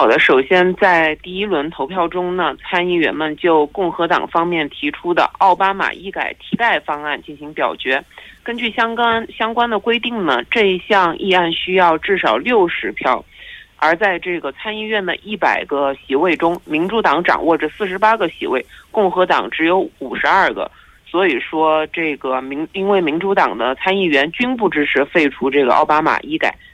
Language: Korean